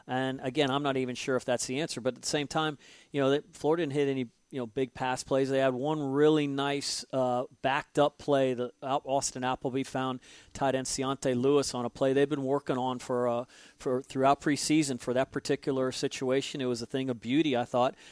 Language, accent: English, American